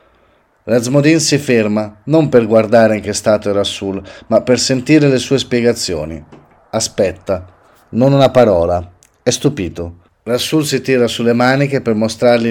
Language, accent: Italian, native